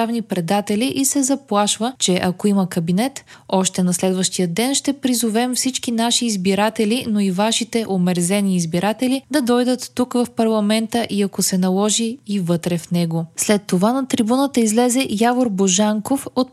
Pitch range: 190-250 Hz